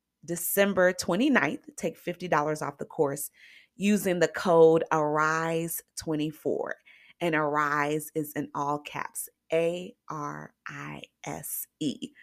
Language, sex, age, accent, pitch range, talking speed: English, female, 30-49, American, 155-200 Hz, 90 wpm